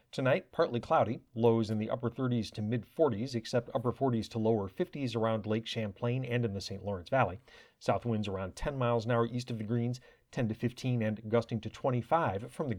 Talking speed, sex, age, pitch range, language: 215 wpm, male, 40-59, 110-125 Hz, English